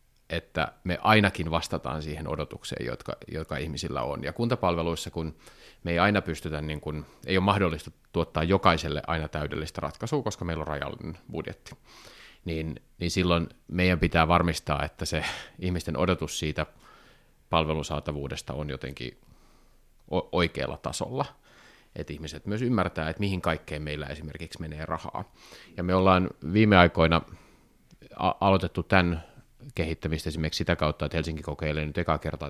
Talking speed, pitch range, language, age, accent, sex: 135 wpm, 75-90 Hz, Finnish, 30-49, native, male